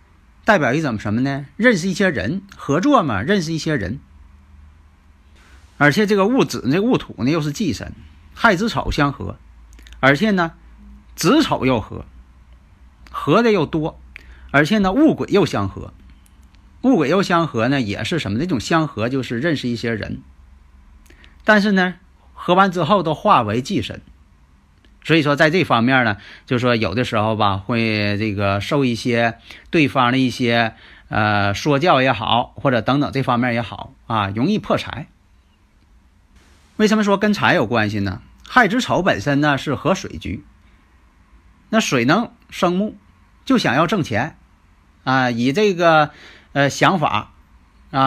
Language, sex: Chinese, male